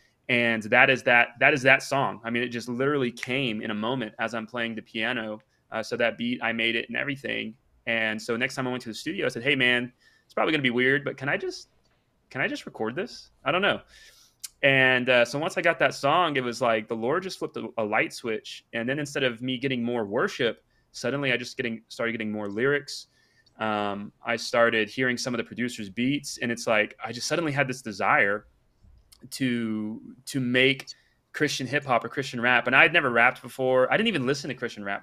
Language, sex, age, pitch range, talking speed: English, male, 30-49, 115-135 Hz, 235 wpm